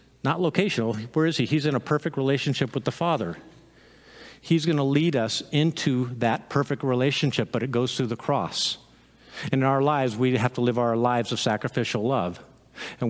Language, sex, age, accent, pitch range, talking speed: English, male, 50-69, American, 120-165 Hz, 190 wpm